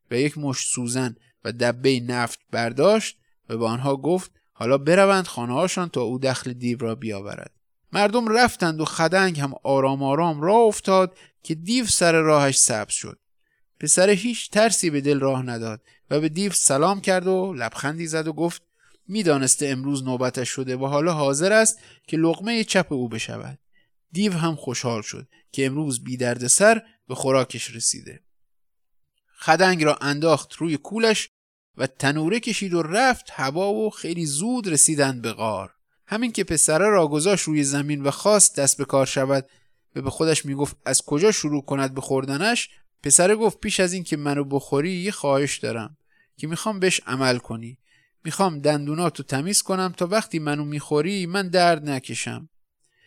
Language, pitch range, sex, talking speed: Persian, 135-185 Hz, male, 165 wpm